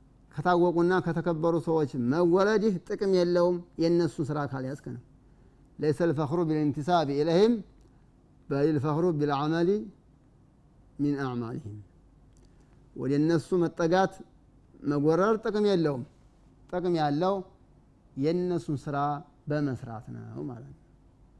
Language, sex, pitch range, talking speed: Amharic, male, 140-185 Hz, 80 wpm